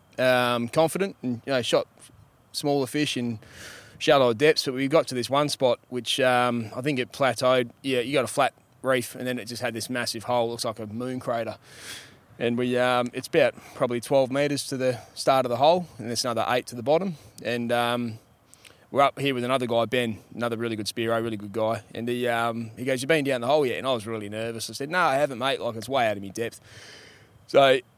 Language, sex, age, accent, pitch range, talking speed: English, male, 20-39, Australian, 115-130 Hz, 235 wpm